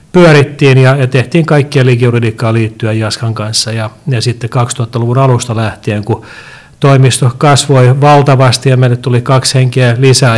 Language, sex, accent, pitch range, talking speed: Finnish, male, native, 115-130 Hz, 140 wpm